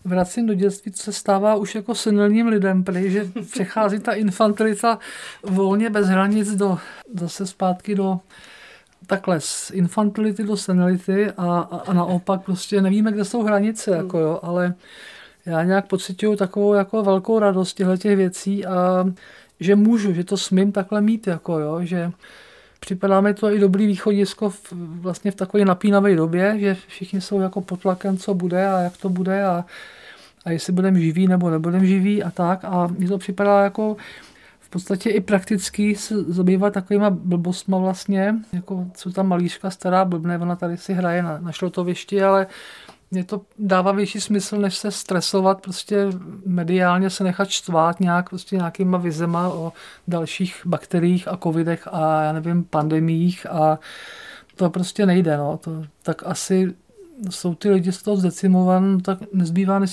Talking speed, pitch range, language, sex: 160 wpm, 180-200 Hz, Czech, male